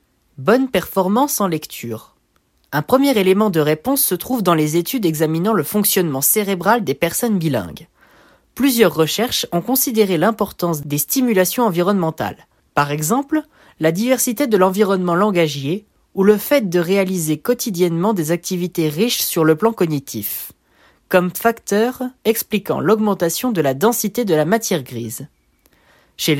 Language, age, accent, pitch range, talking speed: French, 20-39, French, 155-220 Hz, 140 wpm